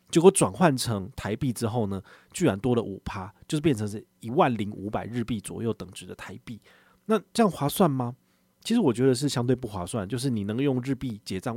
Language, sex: Chinese, male